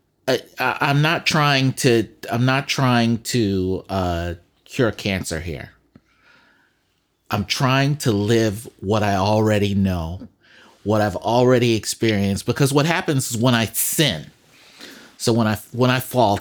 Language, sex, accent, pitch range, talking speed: English, male, American, 105-140 Hz, 140 wpm